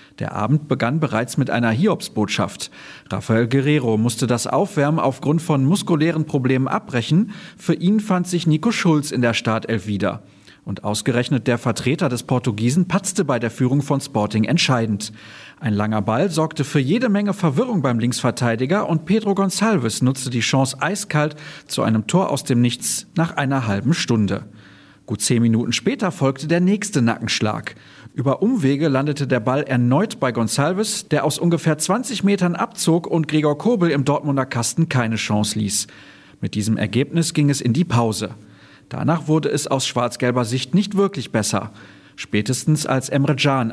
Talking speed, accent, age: 165 wpm, German, 40-59